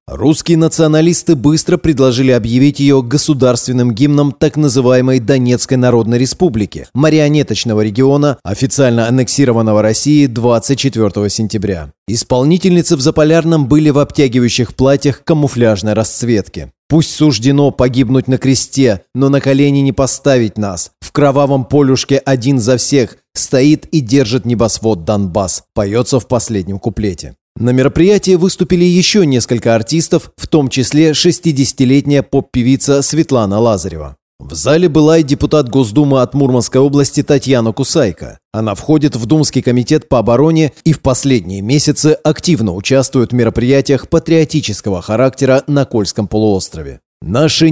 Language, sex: Russian, male